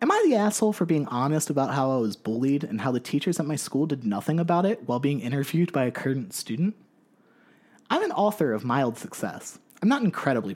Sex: male